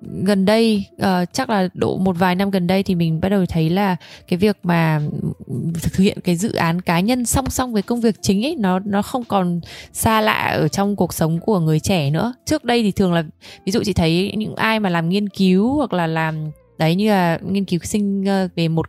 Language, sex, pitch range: Vietnamese, female, 170-210 Hz